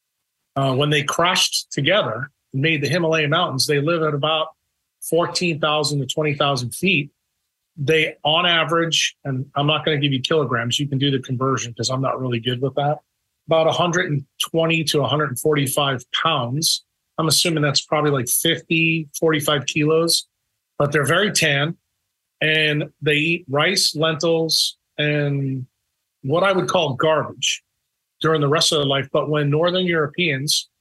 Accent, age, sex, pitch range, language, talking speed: American, 40-59, male, 140-160 Hz, English, 150 wpm